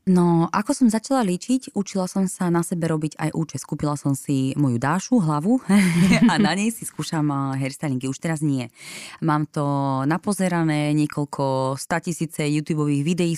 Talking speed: 155 wpm